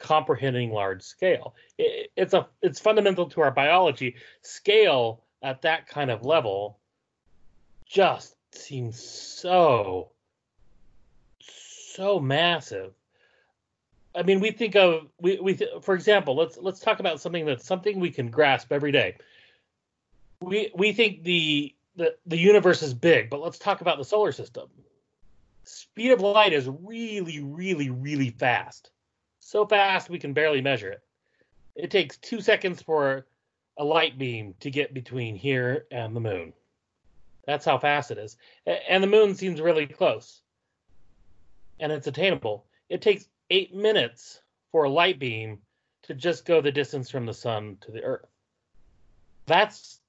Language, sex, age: English, male, 30-49